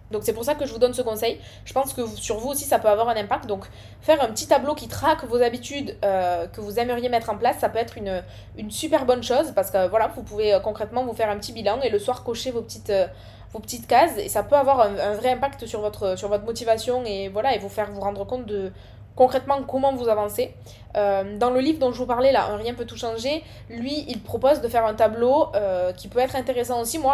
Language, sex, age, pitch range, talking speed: French, female, 20-39, 205-255 Hz, 255 wpm